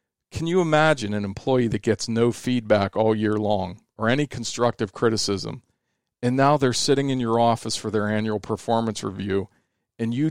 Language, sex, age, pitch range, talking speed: English, male, 40-59, 105-120 Hz, 175 wpm